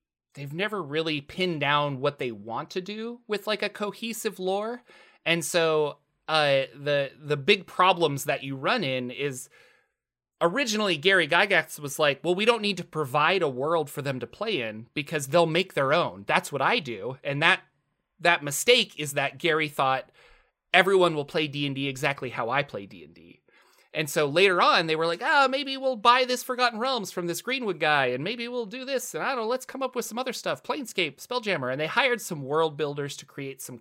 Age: 30-49